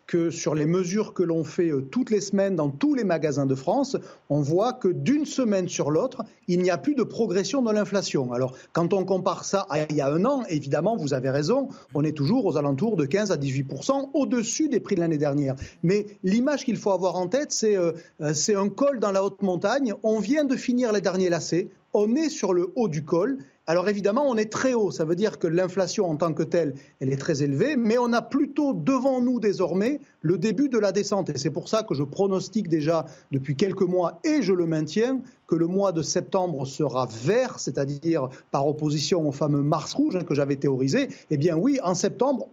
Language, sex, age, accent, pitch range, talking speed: French, male, 40-59, French, 160-230 Hz, 225 wpm